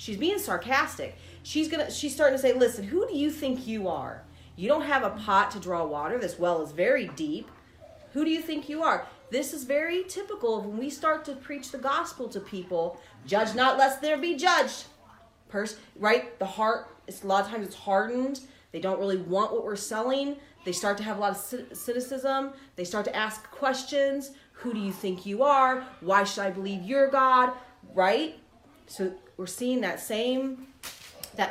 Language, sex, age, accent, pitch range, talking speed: English, female, 30-49, American, 180-270 Hz, 195 wpm